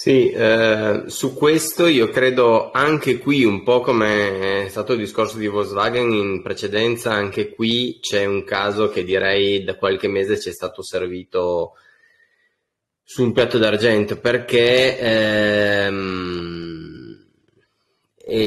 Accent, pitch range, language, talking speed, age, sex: native, 95-120 Hz, Italian, 125 wpm, 20-39, male